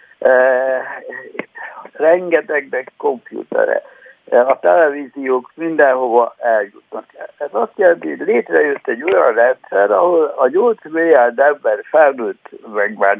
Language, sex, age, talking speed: Hungarian, male, 60-79, 105 wpm